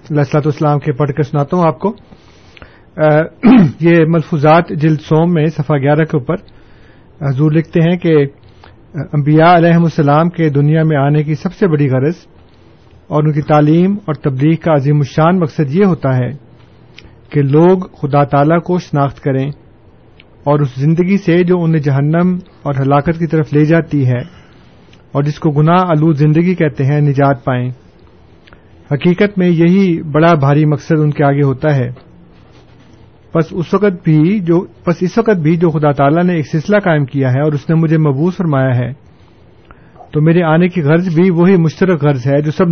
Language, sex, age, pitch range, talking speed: Urdu, male, 40-59, 135-165 Hz, 175 wpm